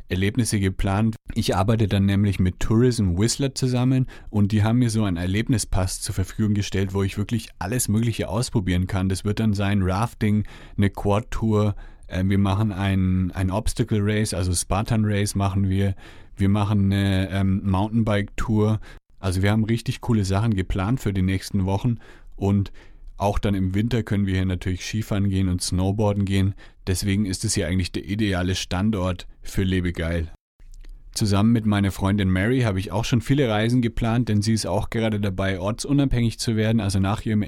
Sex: male